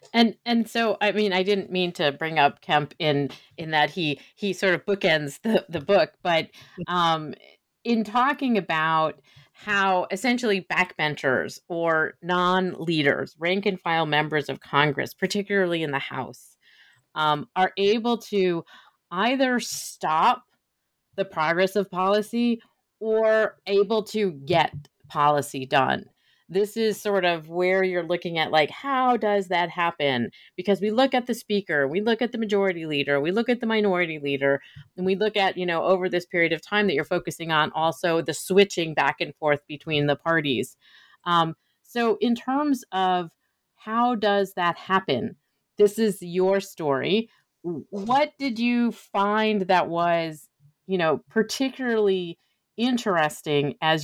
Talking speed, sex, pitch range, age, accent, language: 150 wpm, female, 160-210 Hz, 30-49, American, English